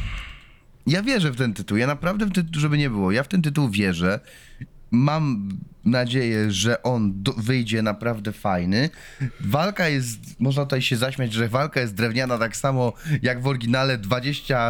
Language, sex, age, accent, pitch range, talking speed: Polish, male, 20-39, native, 110-140 Hz, 170 wpm